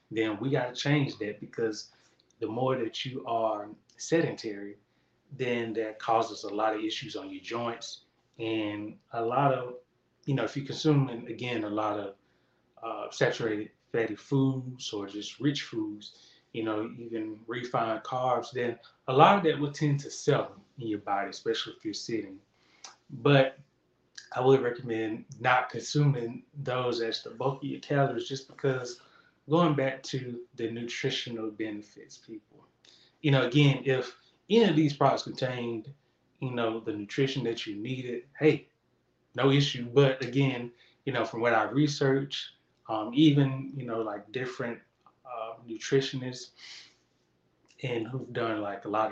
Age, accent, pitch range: 20-39, American, 115-145 Hz